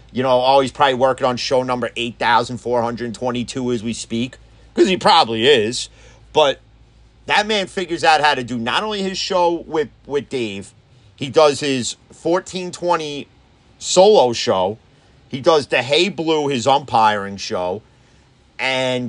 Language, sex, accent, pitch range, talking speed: English, male, American, 115-160 Hz, 150 wpm